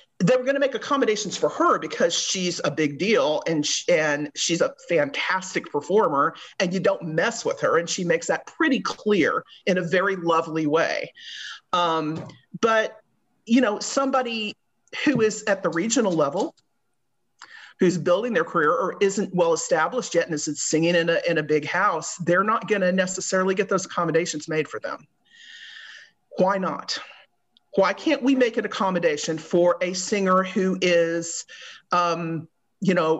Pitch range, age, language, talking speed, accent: 170-255 Hz, 40-59, English, 165 wpm, American